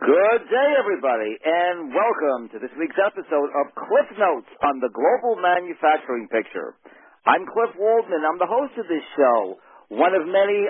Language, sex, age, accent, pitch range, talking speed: English, male, 50-69, American, 160-215 Hz, 165 wpm